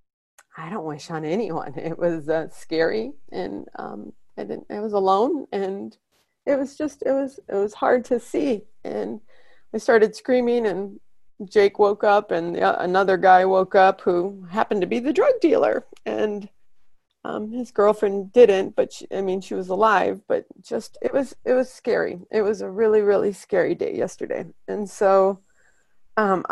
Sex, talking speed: female, 175 wpm